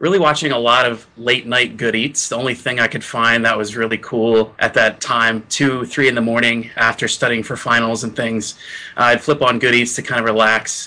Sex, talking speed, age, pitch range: male, 230 wpm, 30-49, 115-150 Hz